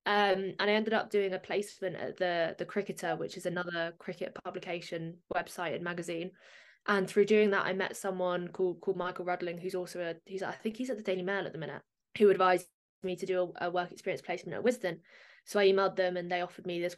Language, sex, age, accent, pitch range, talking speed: English, female, 20-39, British, 175-200 Hz, 235 wpm